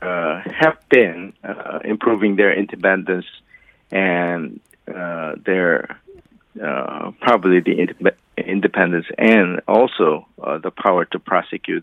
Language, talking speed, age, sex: English, 105 wpm, 50-69, male